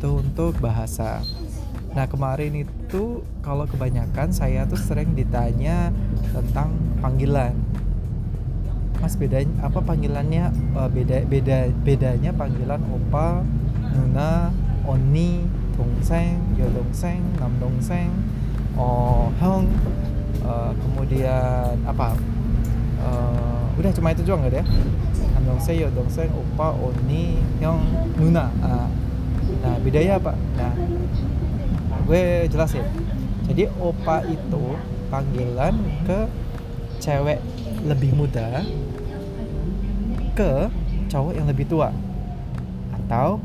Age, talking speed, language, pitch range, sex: 20-39, 95 wpm, Indonesian, 115-135 Hz, male